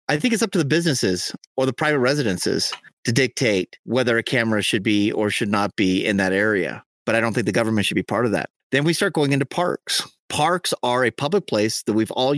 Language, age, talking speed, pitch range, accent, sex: English, 30-49, 240 wpm, 115-150 Hz, American, male